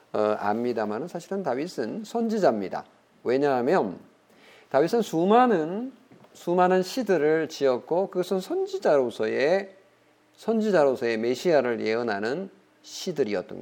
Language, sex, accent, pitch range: Korean, male, native, 135-225 Hz